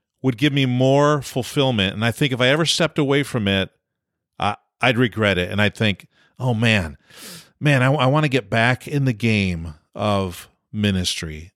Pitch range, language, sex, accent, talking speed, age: 105-140 Hz, English, male, American, 185 wpm, 50-69